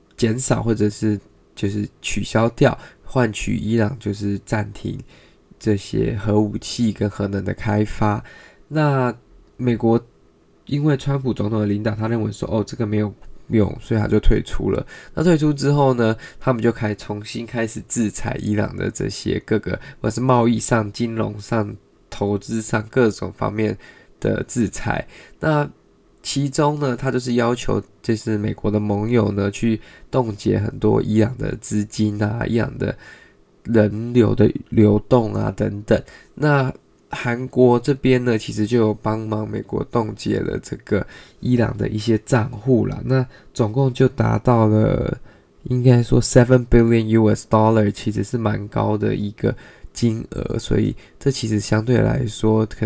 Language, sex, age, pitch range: Chinese, male, 20-39, 105-125 Hz